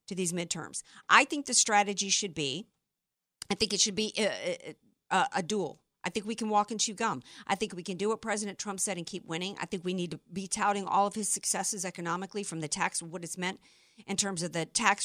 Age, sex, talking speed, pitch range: 50-69, female, 245 wpm, 185-240 Hz